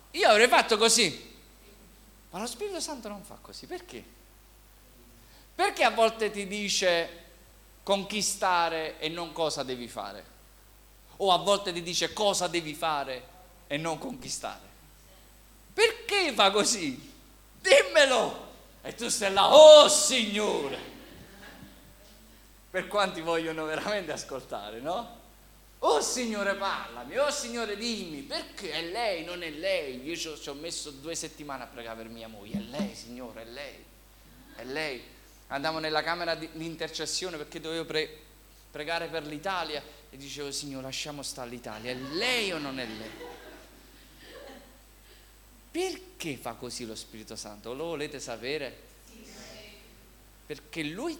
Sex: male